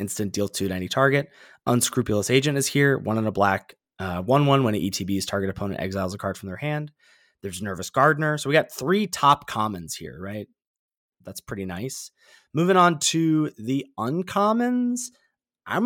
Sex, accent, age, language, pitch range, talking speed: male, American, 20-39, English, 105-140 Hz, 180 wpm